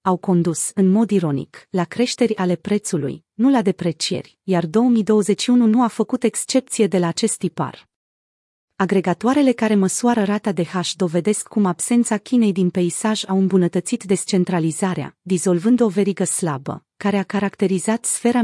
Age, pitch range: 30-49, 180-225 Hz